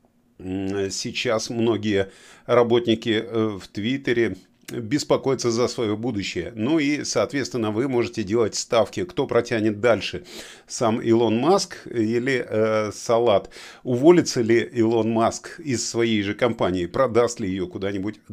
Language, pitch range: Russian, 115-150 Hz